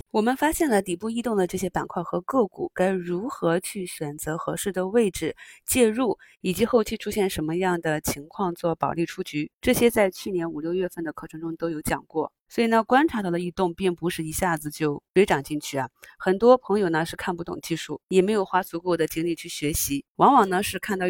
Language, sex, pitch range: Chinese, female, 165-200 Hz